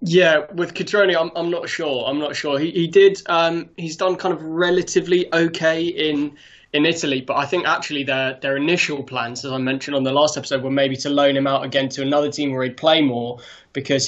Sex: male